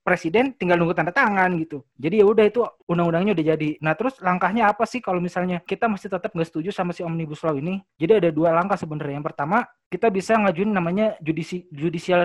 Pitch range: 175-210 Hz